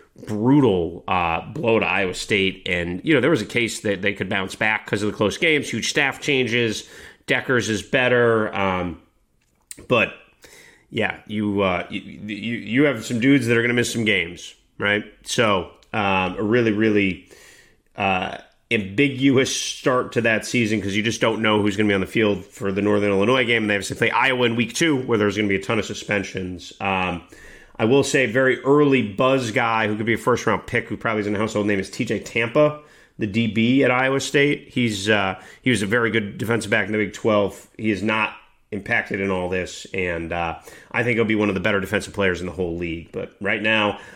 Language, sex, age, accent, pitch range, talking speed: English, male, 30-49, American, 100-125 Hz, 220 wpm